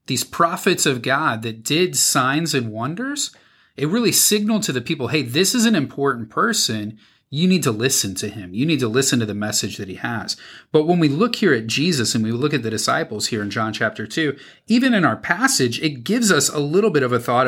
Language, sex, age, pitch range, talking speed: English, male, 30-49, 115-165 Hz, 235 wpm